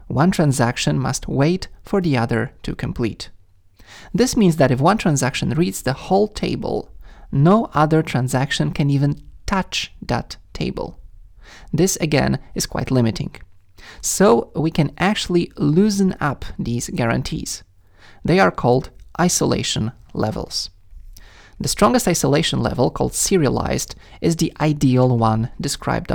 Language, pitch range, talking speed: English, 115-165 Hz, 130 wpm